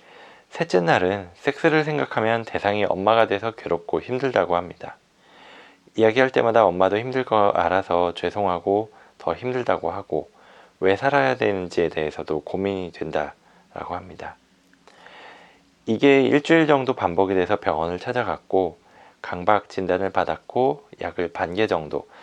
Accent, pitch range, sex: native, 90-115 Hz, male